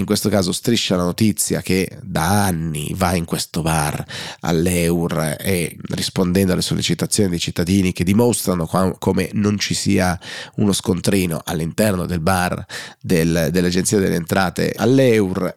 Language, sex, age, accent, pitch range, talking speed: Italian, male, 30-49, native, 85-105 Hz, 140 wpm